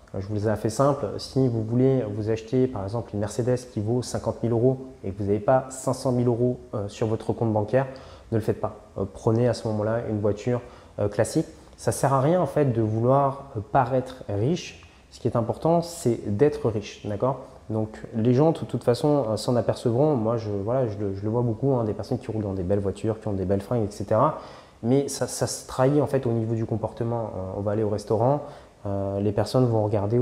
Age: 20-39